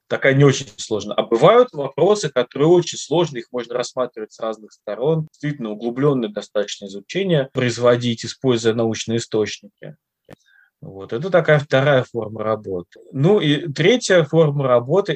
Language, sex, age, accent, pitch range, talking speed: Russian, male, 20-39, native, 110-145 Hz, 140 wpm